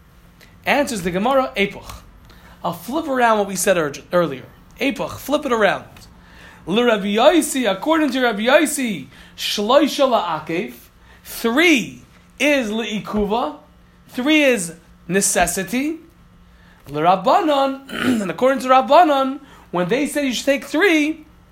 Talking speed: 110 wpm